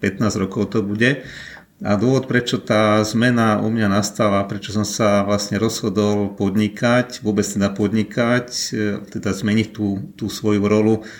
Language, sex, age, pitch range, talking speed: Slovak, male, 40-59, 105-110 Hz, 145 wpm